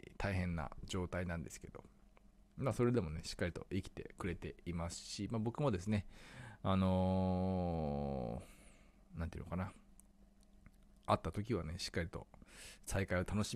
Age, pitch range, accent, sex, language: 20-39, 85-110 Hz, native, male, Japanese